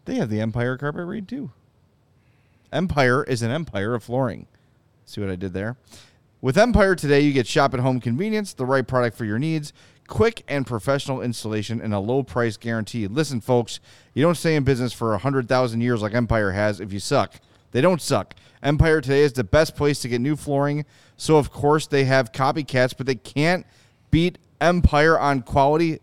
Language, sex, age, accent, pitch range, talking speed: English, male, 30-49, American, 115-145 Hz, 185 wpm